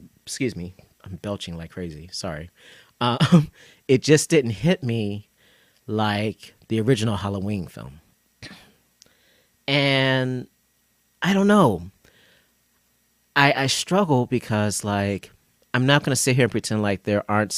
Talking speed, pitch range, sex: 125 wpm, 95-120 Hz, male